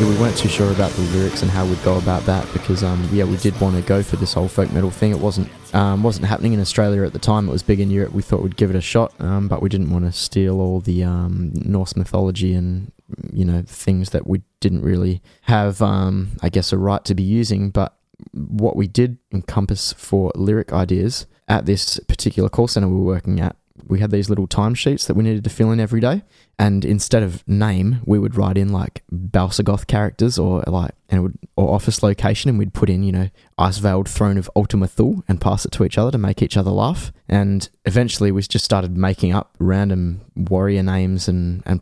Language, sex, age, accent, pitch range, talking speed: English, male, 20-39, Australian, 95-105 Hz, 230 wpm